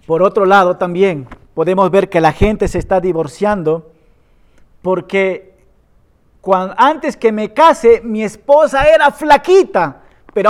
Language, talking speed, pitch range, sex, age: Spanish, 125 wpm, 170-260 Hz, male, 40-59